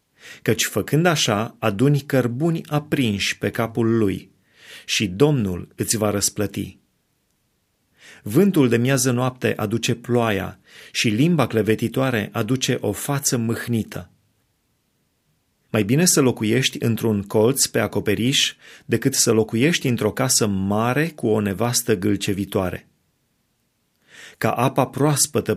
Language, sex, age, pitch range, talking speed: Romanian, male, 30-49, 110-135 Hz, 115 wpm